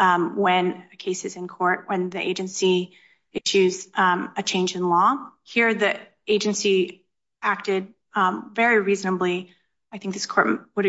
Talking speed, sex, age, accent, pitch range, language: 155 wpm, female, 30-49, American, 185-210 Hz, English